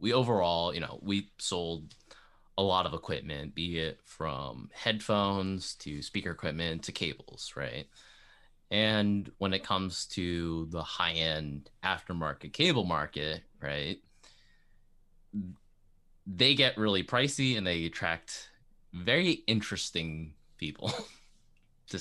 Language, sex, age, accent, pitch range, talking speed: English, male, 20-39, American, 85-105 Hz, 115 wpm